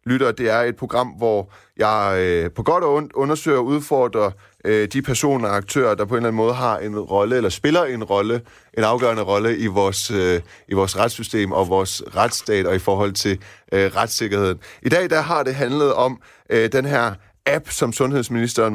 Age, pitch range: 30-49, 100-125 Hz